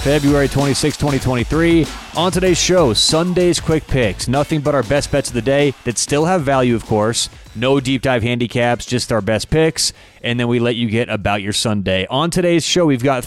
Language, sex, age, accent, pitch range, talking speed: English, male, 30-49, American, 115-145 Hz, 205 wpm